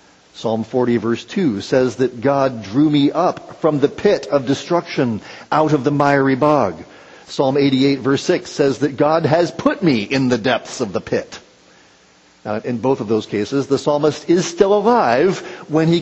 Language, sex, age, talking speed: English, male, 50-69, 185 wpm